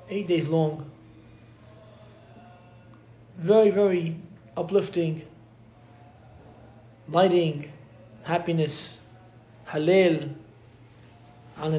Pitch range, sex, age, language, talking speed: 120-165 Hz, male, 20-39, English, 50 wpm